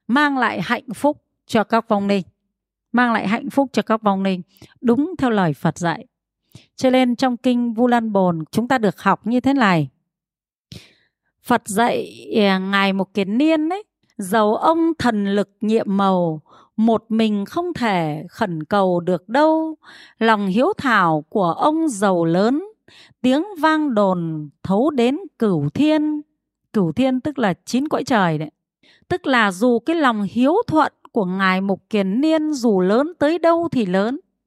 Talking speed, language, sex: 165 wpm, Vietnamese, female